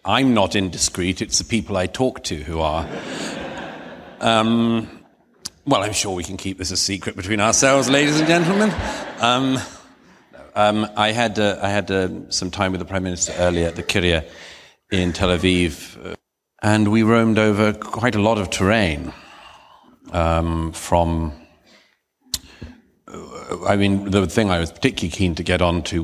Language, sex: English, male